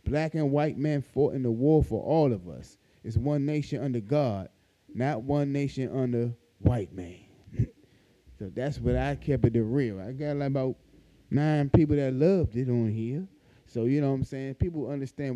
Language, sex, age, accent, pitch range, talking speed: English, male, 20-39, American, 105-135 Hz, 195 wpm